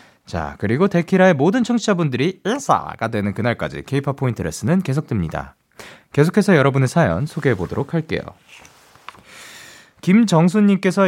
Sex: male